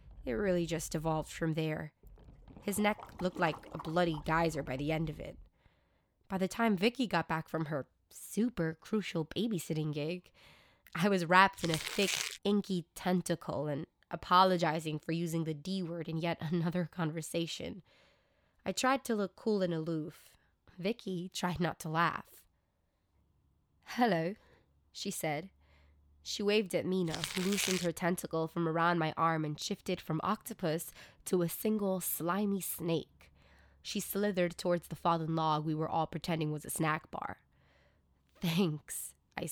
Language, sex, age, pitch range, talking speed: English, female, 20-39, 140-180 Hz, 150 wpm